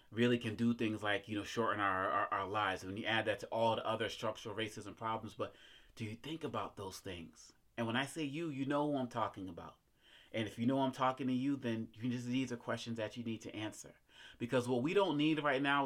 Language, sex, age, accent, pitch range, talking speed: English, male, 30-49, American, 105-125 Hz, 260 wpm